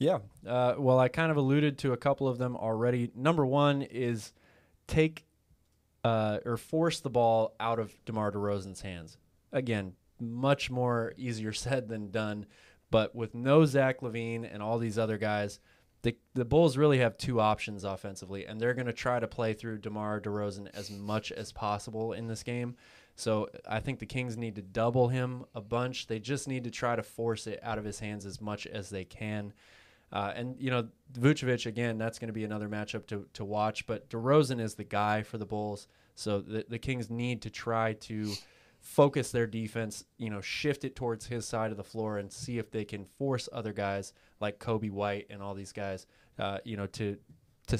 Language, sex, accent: English, male, American